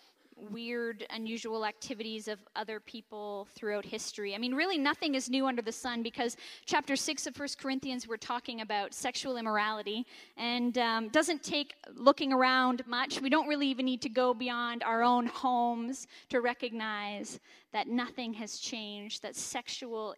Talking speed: 160 wpm